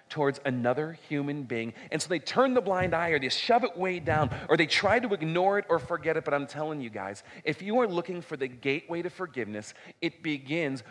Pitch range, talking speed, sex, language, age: 135-185 Hz, 230 wpm, male, English, 40-59